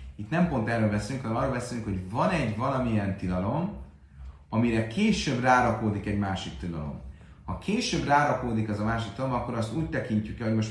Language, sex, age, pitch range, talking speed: Hungarian, male, 30-49, 90-115 Hz, 180 wpm